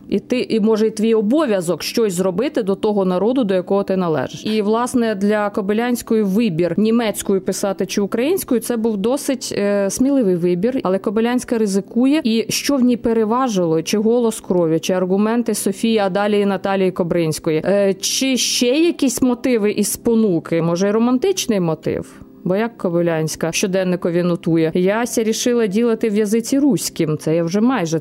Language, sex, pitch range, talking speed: Ukrainian, female, 190-245 Hz, 165 wpm